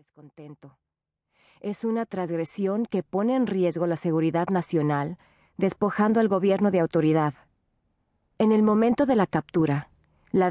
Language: Spanish